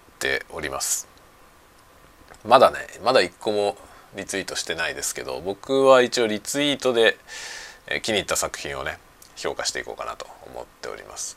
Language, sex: Japanese, male